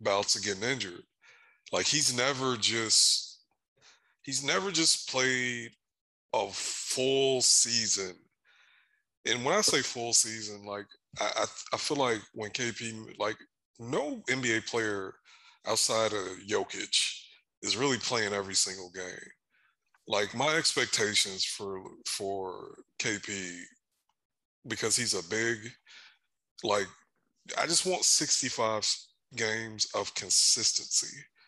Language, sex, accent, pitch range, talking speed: English, male, American, 100-125 Hz, 110 wpm